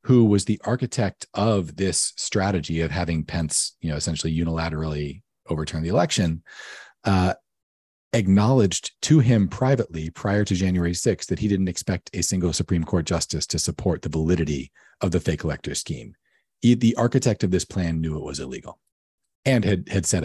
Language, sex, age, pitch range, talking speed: English, male, 40-59, 80-105 Hz, 170 wpm